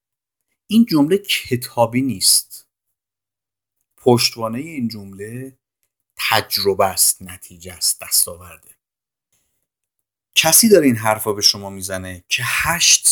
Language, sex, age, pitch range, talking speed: Persian, male, 50-69, 110-185 Hz, 95 wpm